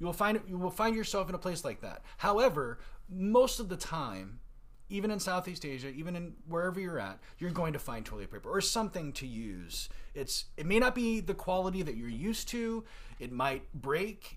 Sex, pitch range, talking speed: male, 120-175 Hz, 210 wpm